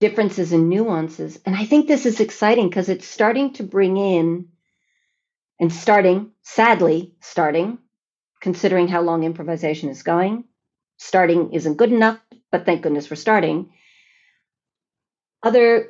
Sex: female